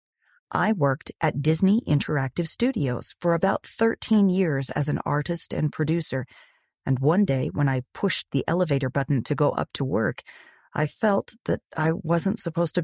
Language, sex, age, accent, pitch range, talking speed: English, female, 40-59, American, 140-180 Hz, 170 wpm